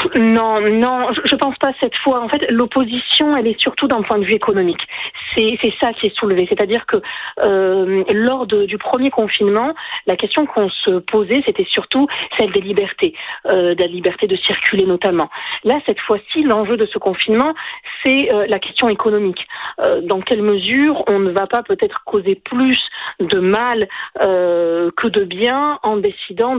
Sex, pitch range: female, 195-280 Hz